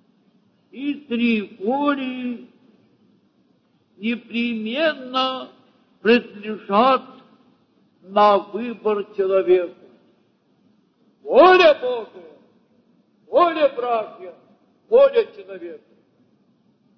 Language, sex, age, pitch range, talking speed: Russian, male, 60-79, 215-265 Hz, 50 wpm